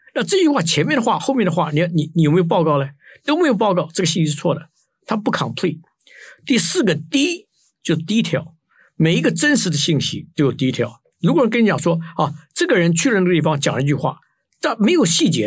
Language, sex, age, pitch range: Chinese, male, 50-69, 155-200 Hz